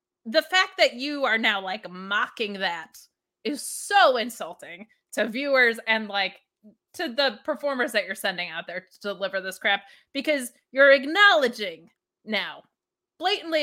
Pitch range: 215-335 Hz